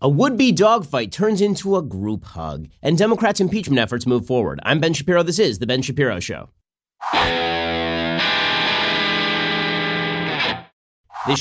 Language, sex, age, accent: English, male, 30-49, American